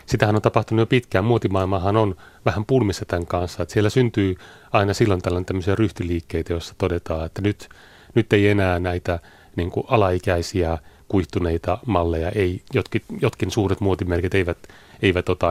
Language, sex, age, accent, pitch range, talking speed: Finnish, male, 30-49, native, 90-120 Hz, 145 wpm